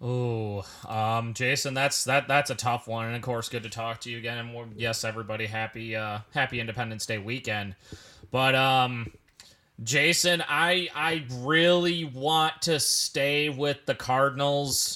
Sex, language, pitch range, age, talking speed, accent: male, English, 120-150 Hz, 20-39, 155 wpm, American